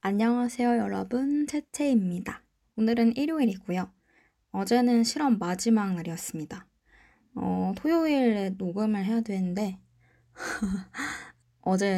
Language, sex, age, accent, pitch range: Korean, female, 20-39, native, 180-235 Hz